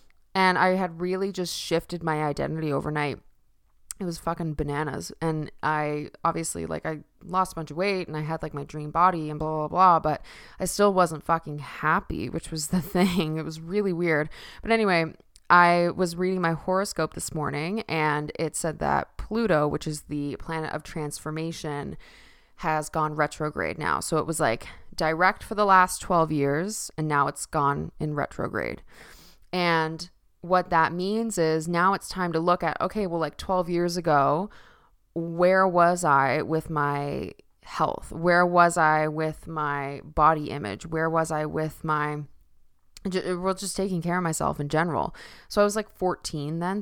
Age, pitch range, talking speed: 20-39, 150-180 Hz, 175 wpm